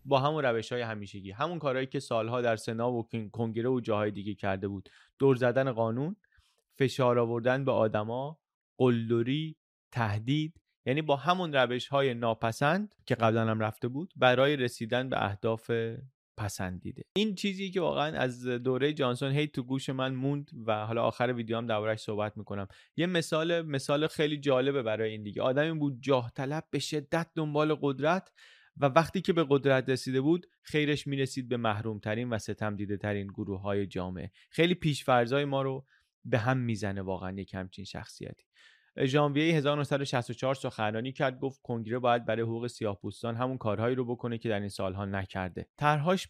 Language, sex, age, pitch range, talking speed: Persian, male, 30-49, 115-140 Hz, 165 wpm